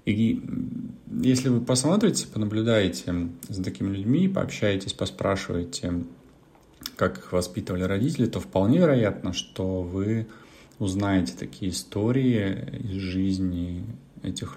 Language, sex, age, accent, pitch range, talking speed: Russian, male, 30-49, native, 90-110 Hz, 105 wpm